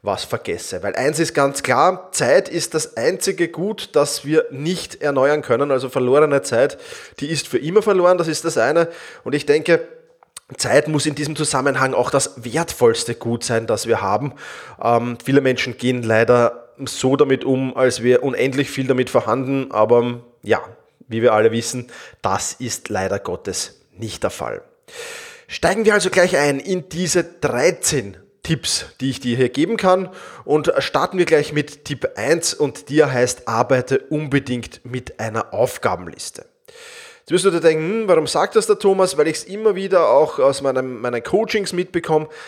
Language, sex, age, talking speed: German, male, 20-39, 170 wpm